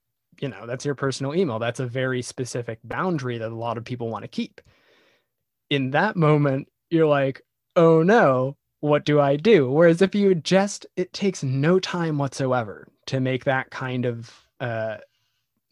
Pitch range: 125-155 Hz